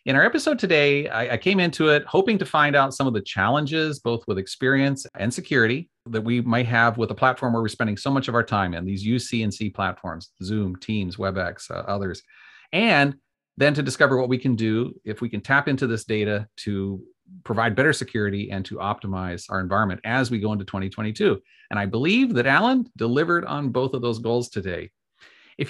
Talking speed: 205 wpm